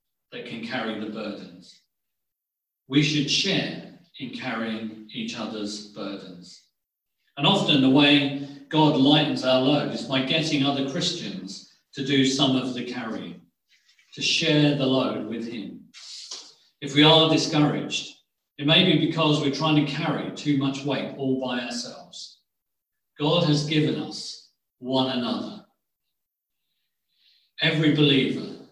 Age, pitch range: 40-59, 130-150 Hz